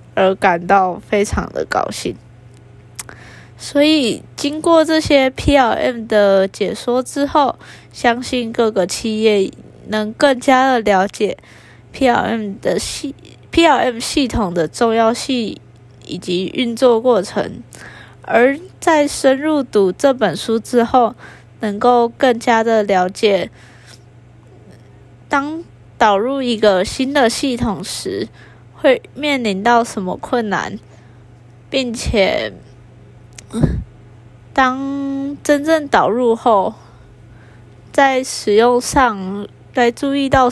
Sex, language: female, Chinese